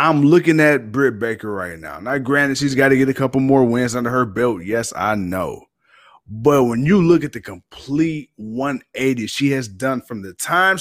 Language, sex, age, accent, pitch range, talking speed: English, male, 30-49, American, 120-150 Hz, 205 wpm